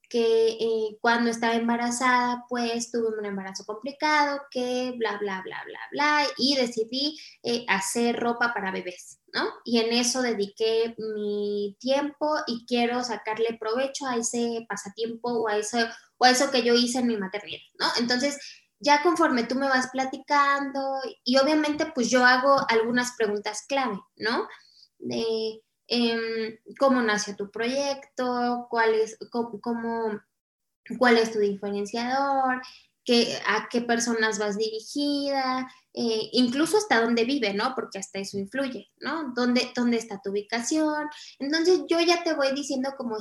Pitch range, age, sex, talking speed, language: 220-265 Hz, 20-39, female, 140 wpm, Spanish